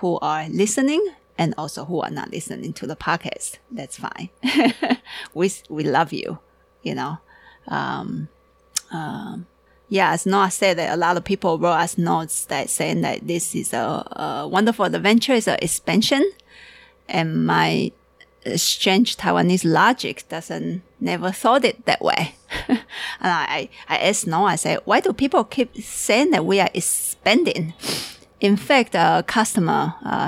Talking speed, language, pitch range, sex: 155 wpm, English, 165-230 Hz, female